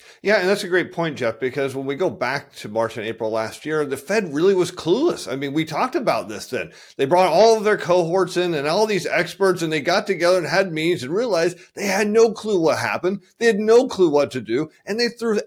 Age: 40-59